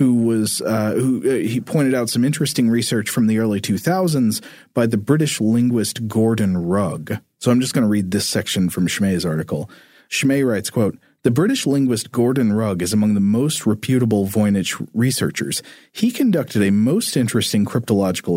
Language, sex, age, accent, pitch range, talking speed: English, male, 40-59, American, 105-140 Hz, 170 wpm